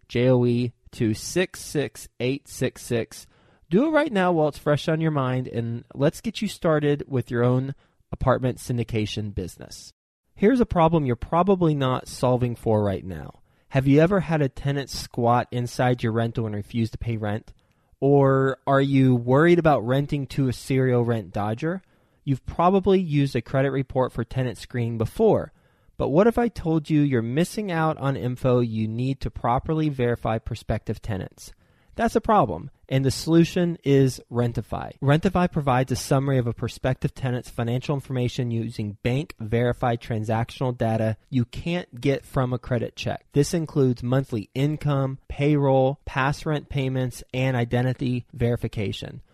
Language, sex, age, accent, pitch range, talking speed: English, male, 20-39, American, 120-150 Hz, 155 wpm